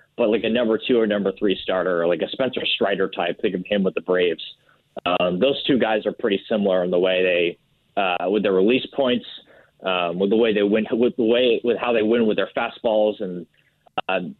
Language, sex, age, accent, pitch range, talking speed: English, male, 20-39, American, 95-120 Hz, 235 wpm